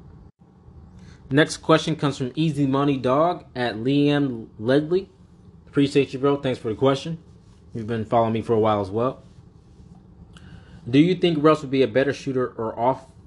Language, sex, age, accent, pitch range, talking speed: English, male, 20-39, American, 105-145 Hz, 165 wpm